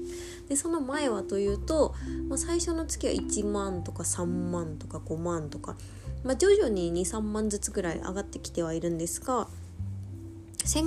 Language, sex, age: Japanese, female, 20-39